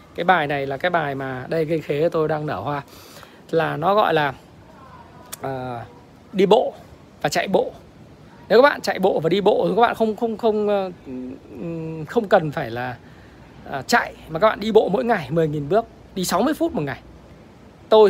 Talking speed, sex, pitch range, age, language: 190 wpm, male, 150-220 Hz, 20-39, Vietnamese